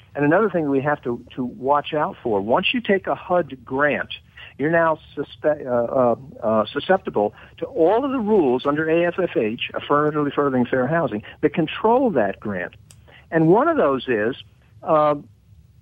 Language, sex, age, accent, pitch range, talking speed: English, male, 60-79, American, 125-190 Hz, 165 wpm